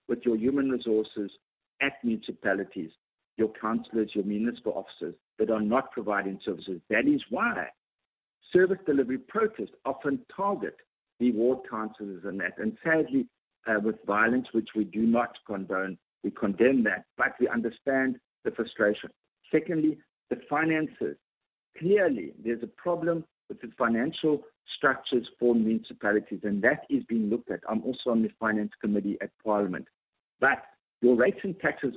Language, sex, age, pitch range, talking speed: English, male, 50-69, 110-160 Hz, 150 wpm